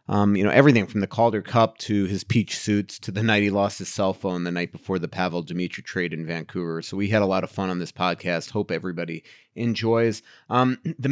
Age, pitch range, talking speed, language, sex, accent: 30-49, 95-110 Hz, 240 wpm, English, male, American